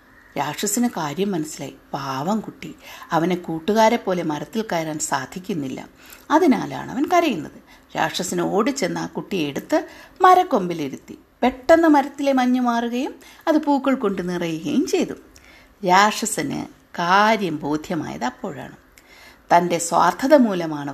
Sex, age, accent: female, 60-79, native